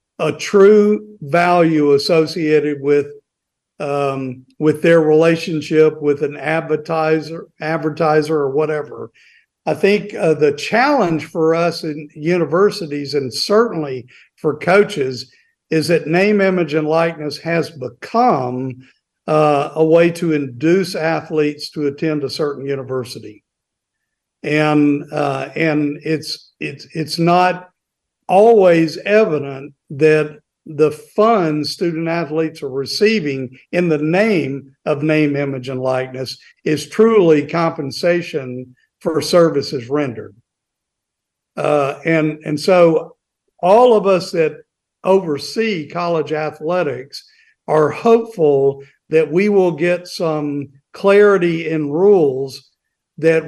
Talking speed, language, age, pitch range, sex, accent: 110 wpm, English, 50-69, 145-170 Hz, male, American